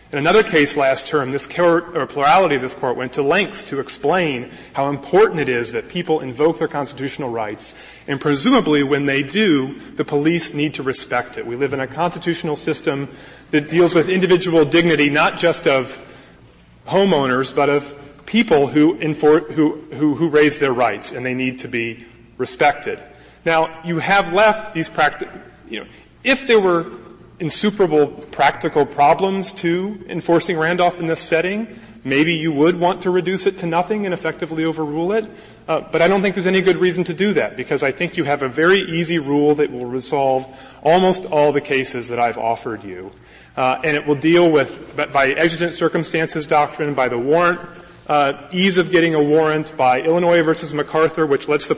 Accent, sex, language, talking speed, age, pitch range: American, male, English, 185 wpm, 30-49, 140-170 Hz